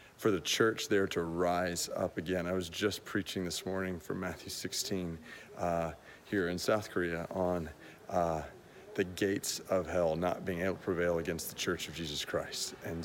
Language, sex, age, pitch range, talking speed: English, male, 40-59, 110-130 Hz, 185 wpm